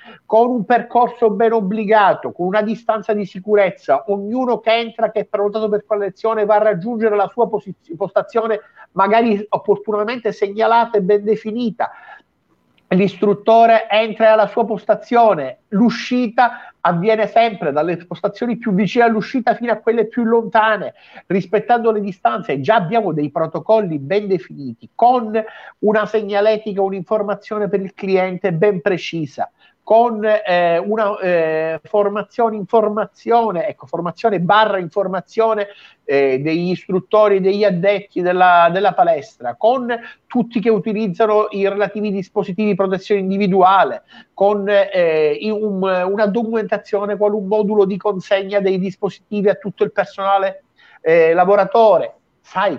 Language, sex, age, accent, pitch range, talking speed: Italian, male, 50-69, native, 190-225 Hz, 130 wpm